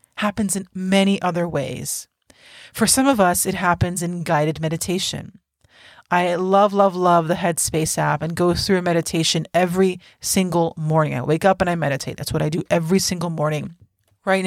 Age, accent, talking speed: 30-49, American, 180 wpm